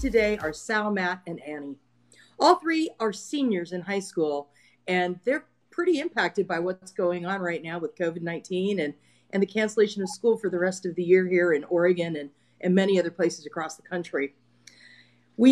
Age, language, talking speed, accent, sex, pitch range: 40-59, English, 195 wpm, American, female, 180-245 Hz